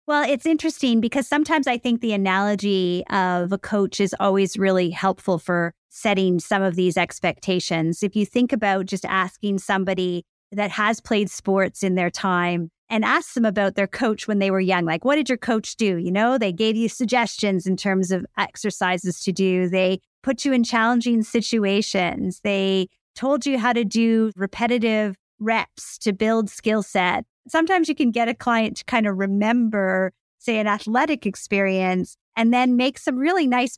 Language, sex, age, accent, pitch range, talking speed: English, female, 30-49, American, 195-235 Hz, 180 wpm